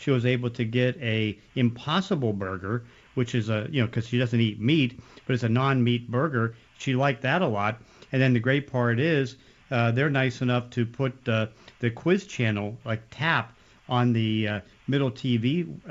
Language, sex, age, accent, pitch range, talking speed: English, male, 50-69, American, 115-130 Hz, 200 wpm